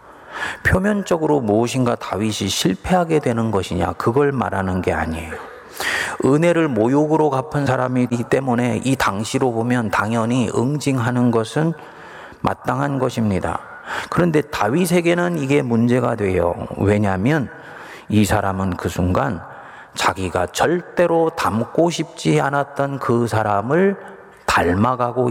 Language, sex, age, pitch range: Korean, male, 40-59, 110-150 Hz